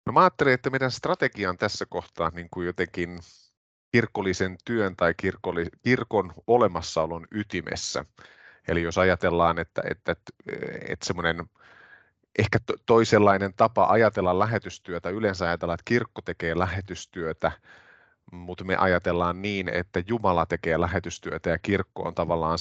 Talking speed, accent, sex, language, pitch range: 135 wpm, native, male, Finnish, 85-105 Hz